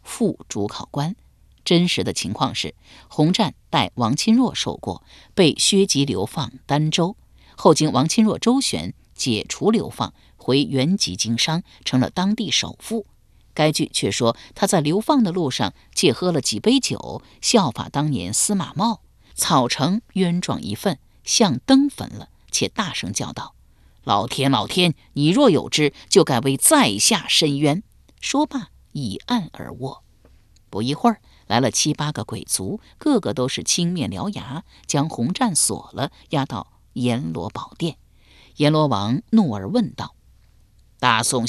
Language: Chinese